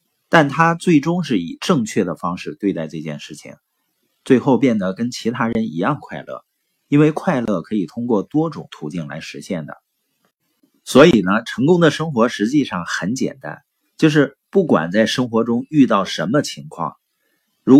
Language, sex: Chinese, male